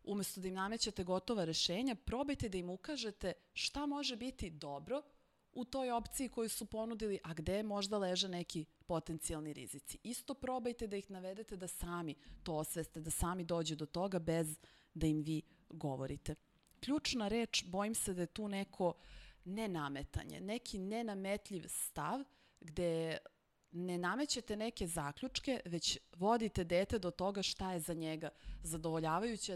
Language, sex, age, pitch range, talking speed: Slovak, female, 30-49, 160-215 Hz, 145 wpm